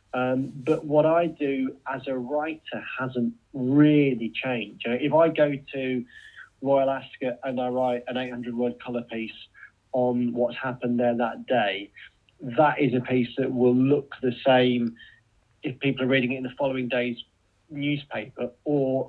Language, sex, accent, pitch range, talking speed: English, male, British, 125-150 Hz, 155 wpm